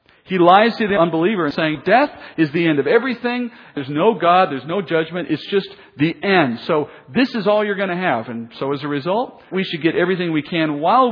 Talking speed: 230 wpm